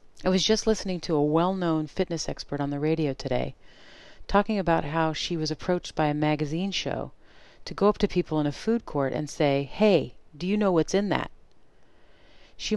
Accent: American